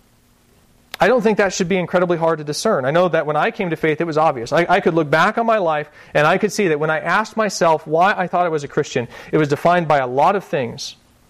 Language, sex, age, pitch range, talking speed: English, male, 30-49, 135-175 Hz, 280 wpm